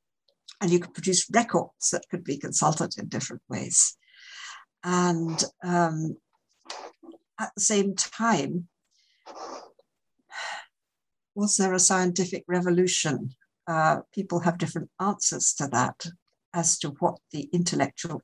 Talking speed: 115 wpm